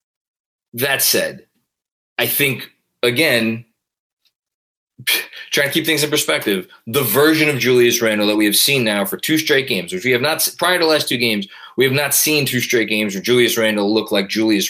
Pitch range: 110-145 Hz